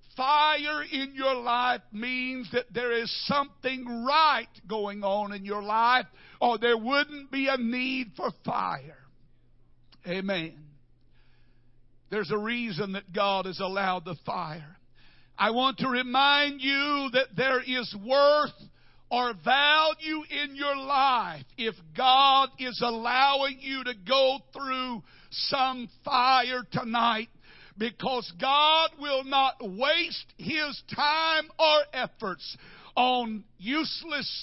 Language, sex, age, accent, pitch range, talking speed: English, male, 60-79, American, 210-275 Hz, 120 wpm